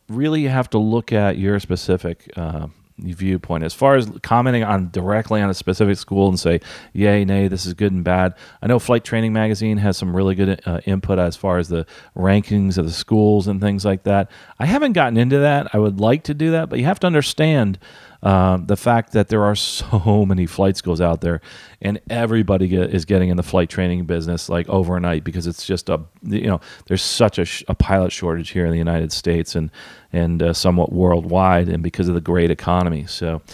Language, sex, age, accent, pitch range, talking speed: English, male, 40-59, American, 90-115 Hz, 220 wpm